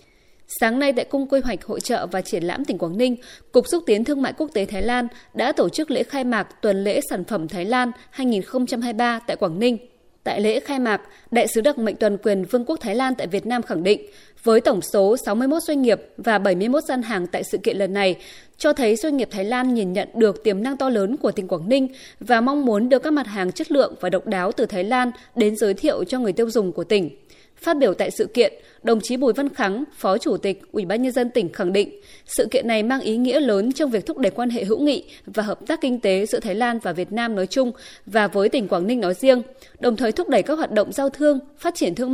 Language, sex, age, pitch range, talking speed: Vietnamese, female, 20-39, 205-275 Hz, 260 wpm